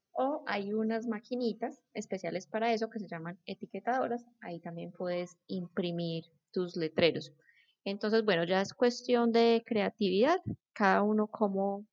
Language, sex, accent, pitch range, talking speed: Spanish, female, Colombian, 190-240 Hz, 135 wpm